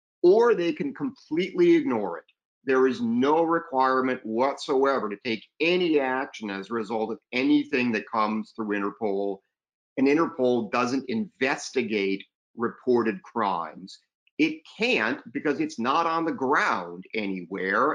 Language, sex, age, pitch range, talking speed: English, male, 50-69, 110-150 Hz, 130 wpm